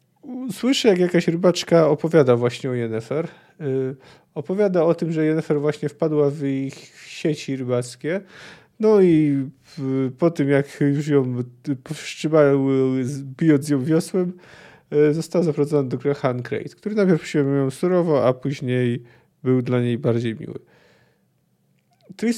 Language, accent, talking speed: Polish, native, 130 wpm